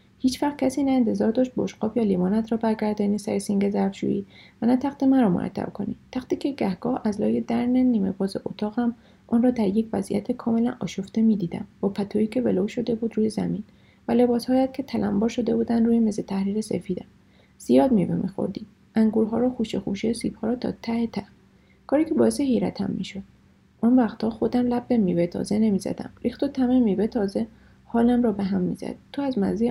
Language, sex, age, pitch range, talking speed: Persian, female, 30-49, 200-235 Hz, 185 wpm